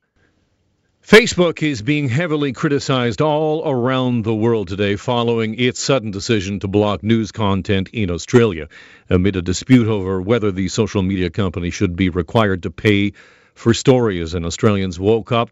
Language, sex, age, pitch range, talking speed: English, male, 50-69, 95-120 Hz, 155 wpm